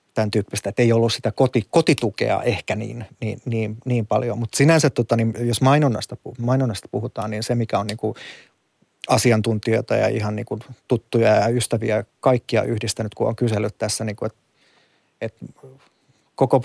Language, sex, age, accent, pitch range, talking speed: Finnish, male, 30-49, native, 110-125 Hz, 160 wpm